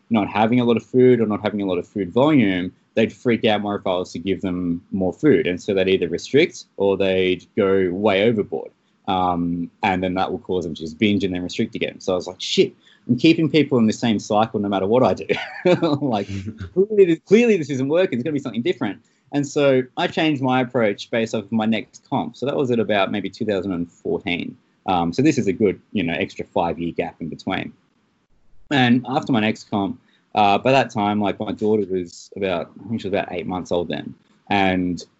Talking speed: 230 wpm